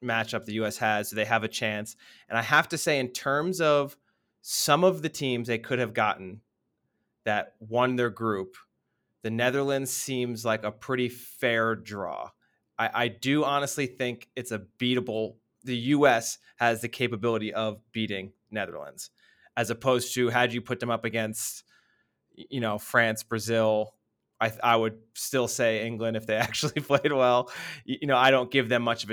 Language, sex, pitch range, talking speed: English, male, 110-130 Hz, 175 wpm